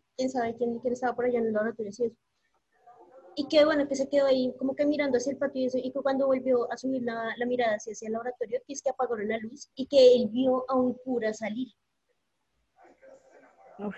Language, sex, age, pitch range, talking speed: Spanish, female, 20-39, 220-260 Hz, 230 wpm